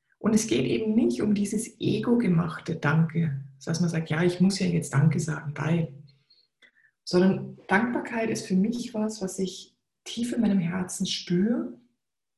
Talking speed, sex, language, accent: 160 wpm, female, German, German